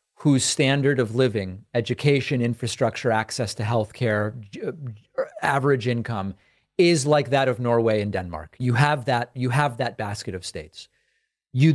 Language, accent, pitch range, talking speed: English, American, 115-145 Hz, 145 wpm